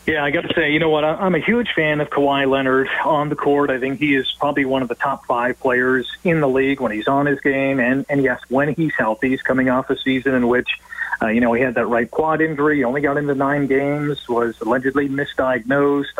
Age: 40-59